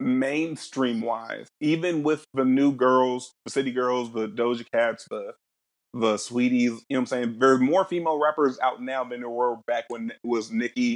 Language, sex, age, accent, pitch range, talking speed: English, male, 30-49, American, 115-140 Hz, 185 wpm